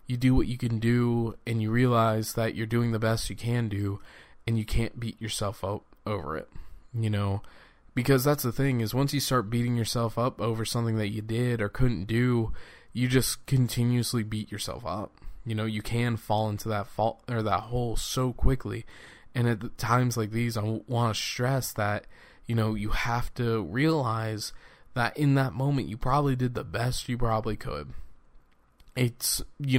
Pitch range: 105-120 Hz